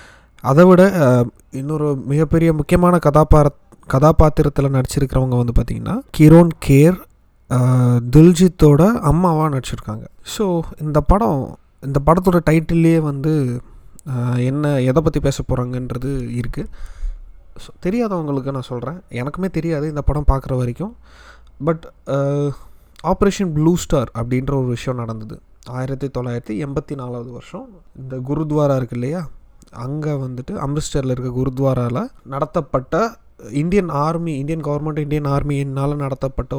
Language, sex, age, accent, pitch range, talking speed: Tamil, male, 20-39, native, 130-160 Hz, 110 wpm